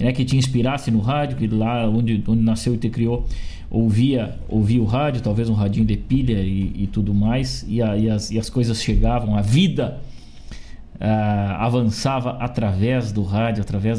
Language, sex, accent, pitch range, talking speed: Portuguese, male, Brazilian, 105-130 Hz, 185 wpm